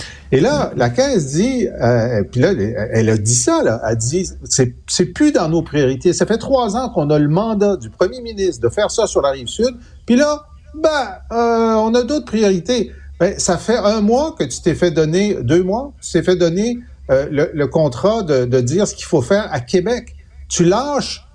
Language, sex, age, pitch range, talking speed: French, male, 50-69, 125-205 Hz, 220 wpm